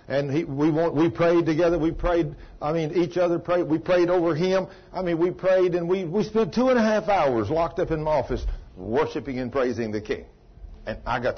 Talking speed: 230 wpm